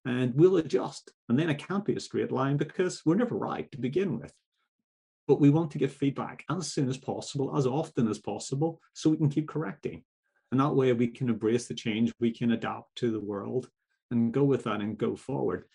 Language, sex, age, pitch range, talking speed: English, male, 30-49, 115-160 Hz, 220 wpm